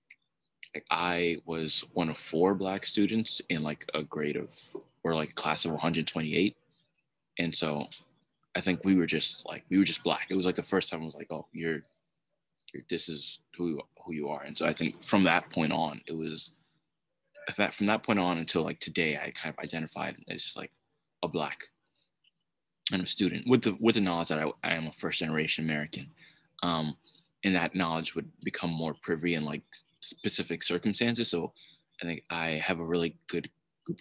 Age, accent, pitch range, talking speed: 20-39, American, 80-95 Hz, 195 wpm